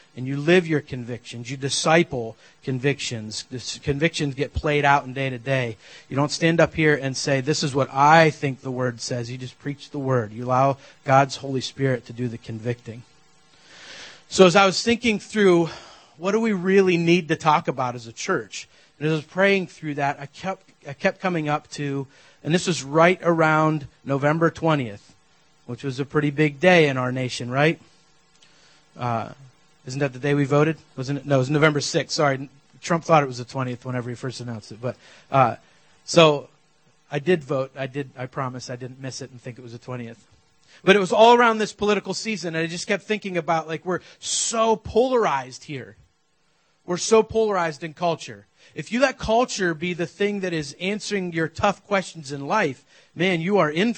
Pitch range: 135-175 Hz